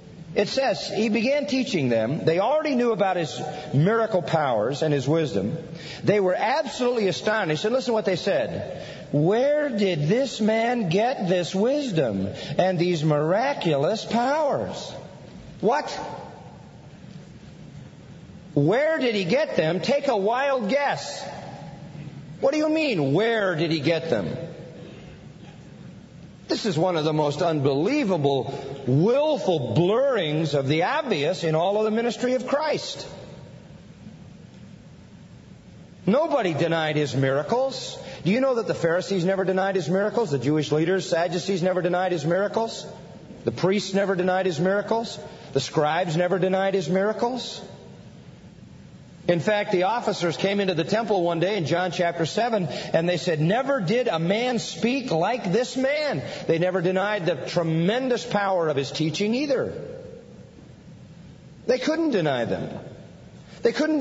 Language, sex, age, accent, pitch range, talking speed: English, male, 50-69, American, 165-235 Hz, 140 wpm